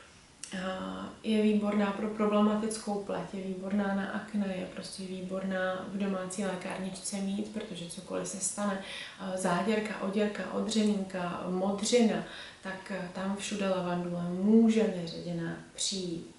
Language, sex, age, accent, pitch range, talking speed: Czech, female, 20-39, native, 180-210 Hz, 115 wpm